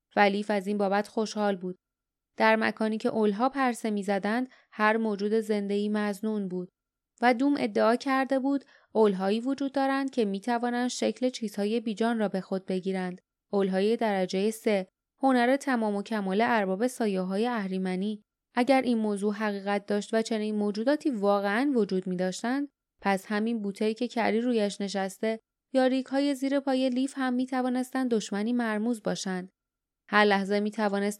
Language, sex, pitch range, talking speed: Persian, female, 200-245 Hz, 150 wpm